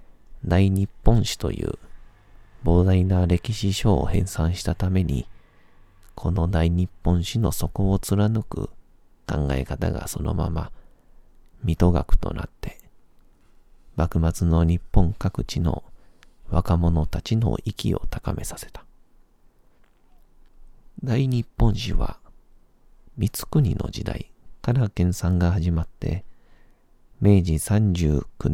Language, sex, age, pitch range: Japanese, male, 40-59, 85-100 Hz